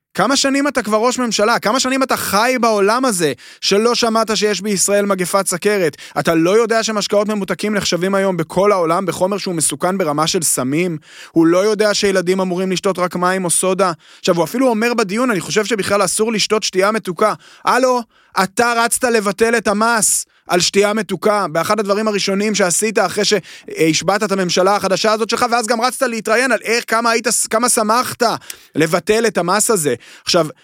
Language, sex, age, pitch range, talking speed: Hebrew, male, 20-39, 170-220 Hz, 165 wpm